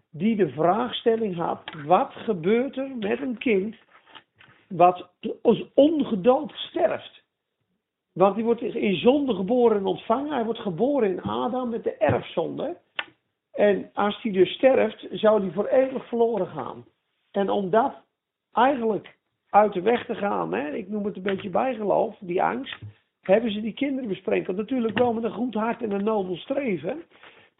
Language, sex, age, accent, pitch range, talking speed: Dutch, male, 50-69, Dutch, 195-245 Hz, 160 wpm